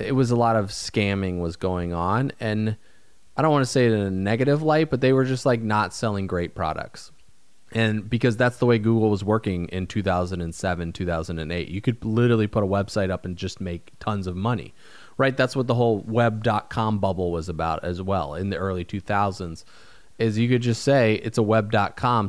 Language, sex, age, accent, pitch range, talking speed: English, male, 30-49, American, 95-120 Hz, 205 wpm